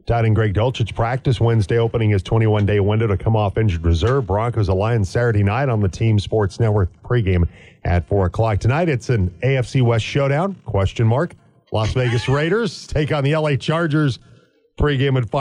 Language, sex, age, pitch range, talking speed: English, male, 40-59, 100-125 Hz, 180 wpm